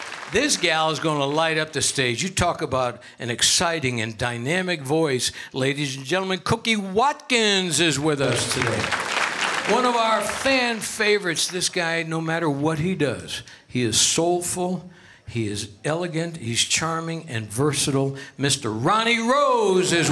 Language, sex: English, male